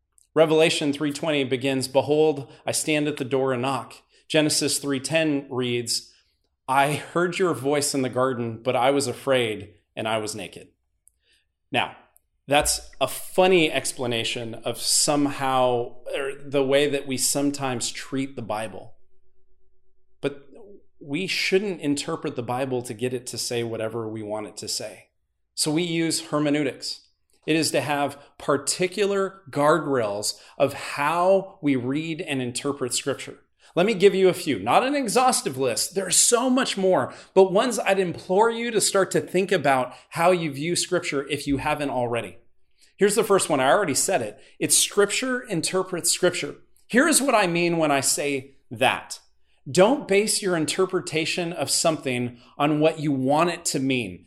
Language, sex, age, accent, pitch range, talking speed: English, male, 30-49, American, 125-170 Hz, 160 wpm